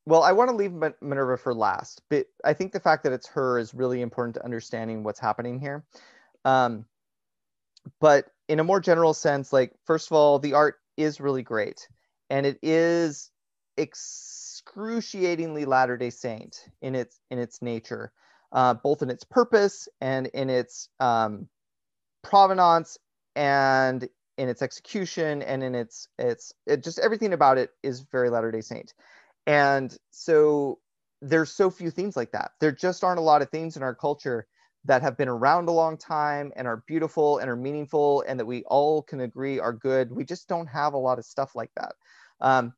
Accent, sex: American, male